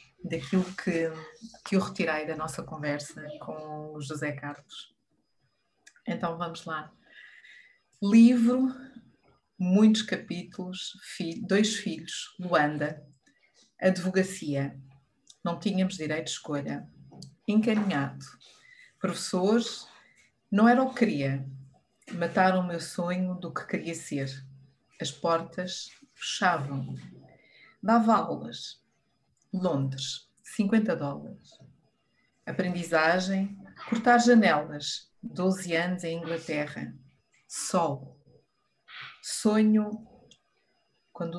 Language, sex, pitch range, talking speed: Portuguese, female, 155-220 Hz, 90 wpm